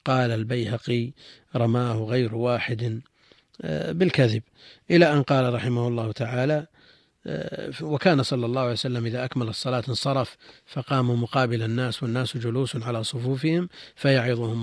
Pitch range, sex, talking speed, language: 115-135 Hz, male, 120 wpm, Arabic